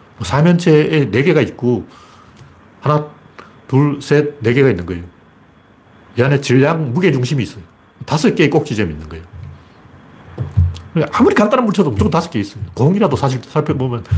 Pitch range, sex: 105-150 Hz, male